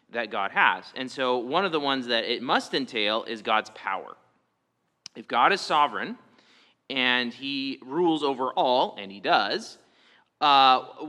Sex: male